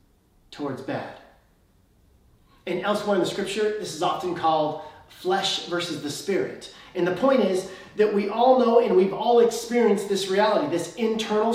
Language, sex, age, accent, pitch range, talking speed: English, male, 30-49, American, 160-205 Hz, 160 wpm